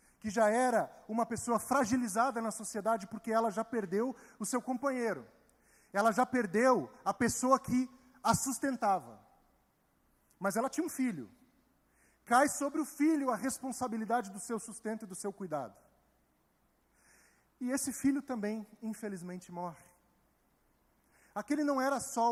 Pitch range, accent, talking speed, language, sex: 195-250 Hz, Brazilian, 135 wpm, Portuguese, male